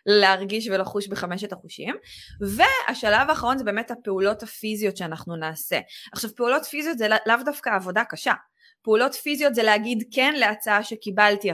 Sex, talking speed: female, 140 wpm